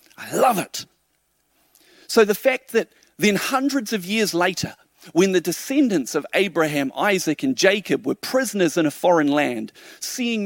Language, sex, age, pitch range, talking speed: English, male, 40-59, 165-230 Hz, 155 wpm